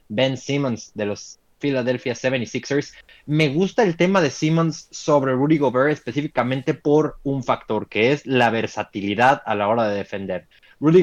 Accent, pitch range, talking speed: Mexican, 115-145 Hz, 160 wpm